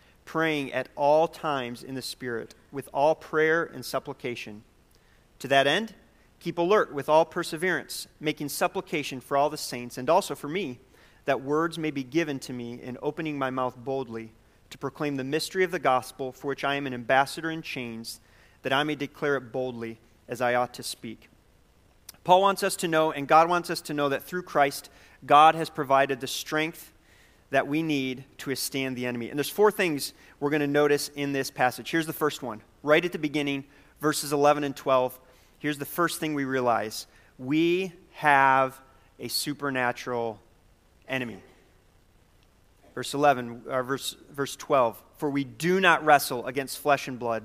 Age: 40-59